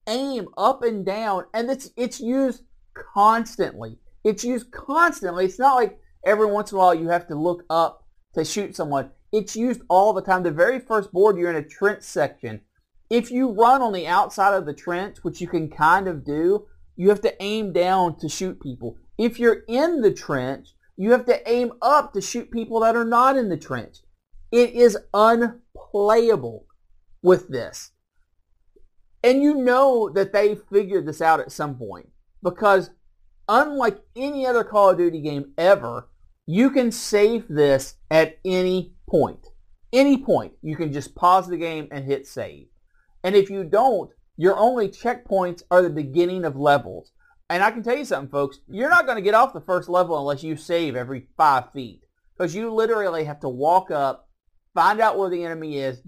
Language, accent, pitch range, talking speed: English, American, 155-230 Hz, 185 wpm